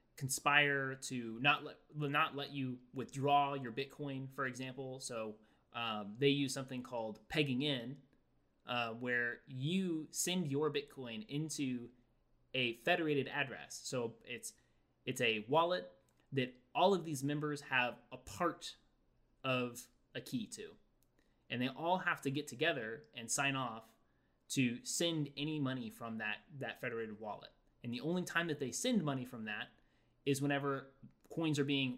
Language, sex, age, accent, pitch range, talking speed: English, male, 20-39, American, 125-145 Hz, 150 wpm